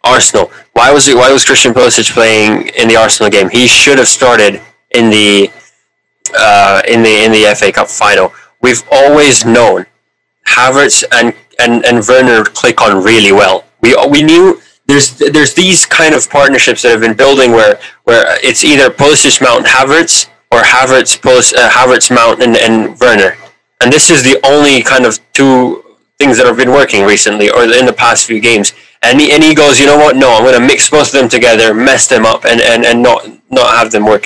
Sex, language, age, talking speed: male, English, 20-39, 205 wpm